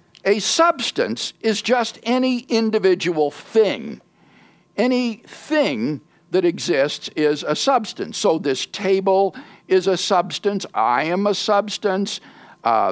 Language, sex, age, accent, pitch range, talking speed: English, male, 60-79, American, 170-230 Hz, 115 wpm